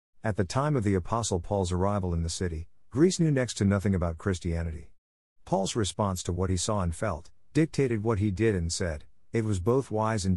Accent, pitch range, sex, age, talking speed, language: American, 85-115 Hz, male, 50-69, 215 wpm, English